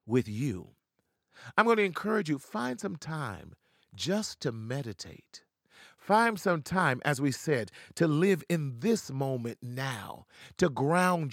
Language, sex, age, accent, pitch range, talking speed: English, male, 40-59, American, 120-165 Hz, 145 wpm